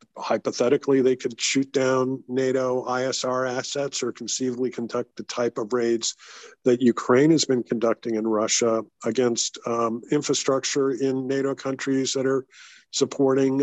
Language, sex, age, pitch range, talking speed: English, male, 50-69, 115-135 Hz, 135 wpm